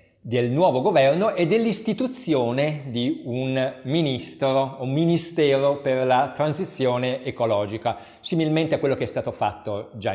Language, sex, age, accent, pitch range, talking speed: Italian, male, 50-69, native, 115-155 Hz, 130 wpm